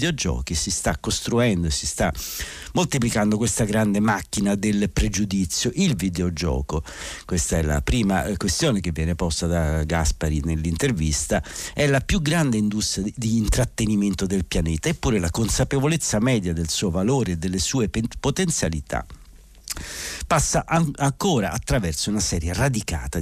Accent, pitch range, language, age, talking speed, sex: native, 85-125 Hz, Italian, 60-79, 130 wpm, male